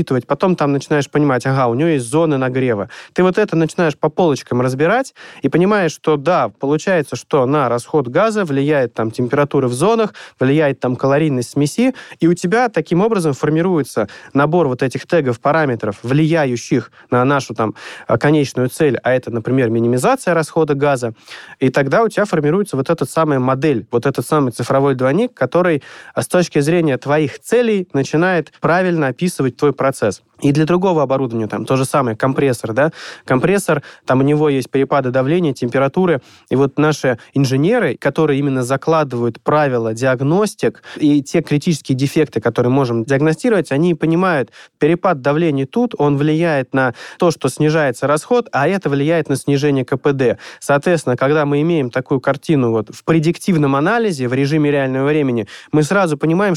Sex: male